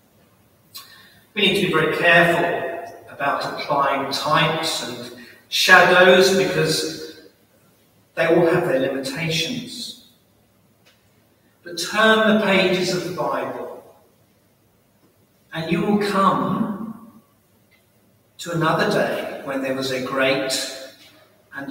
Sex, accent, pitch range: male, British, 120-180 Hz